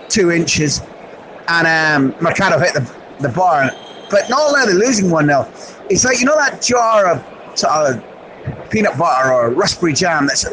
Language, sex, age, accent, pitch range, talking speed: English, male, 30-49, British, 170-240 Hz, 180 wpm